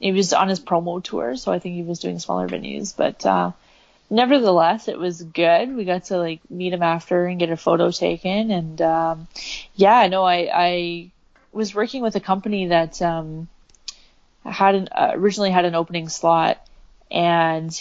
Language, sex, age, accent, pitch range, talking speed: English, female, 20-39, American, 165-195 Hz, 185 wpm